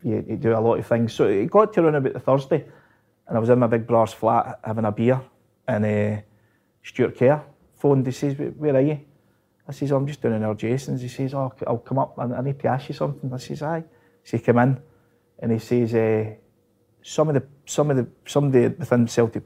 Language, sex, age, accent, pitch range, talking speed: English, male, 30-49, British, 115-145 Hz, 235 wpm